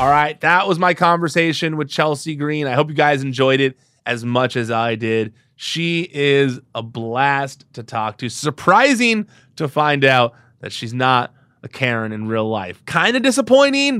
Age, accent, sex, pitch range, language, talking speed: 20-39, American, male, 120-155 Hz, English, 180 wpm